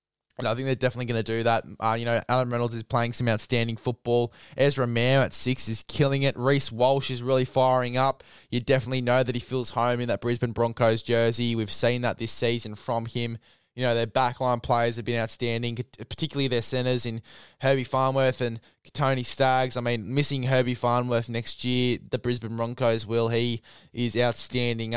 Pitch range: 115-130 Hz